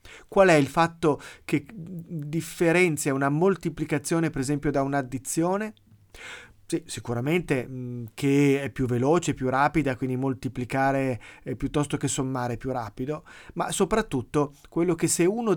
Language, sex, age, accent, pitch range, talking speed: Italian, male, 30-49, native, 135-175 Hz, 135 wpm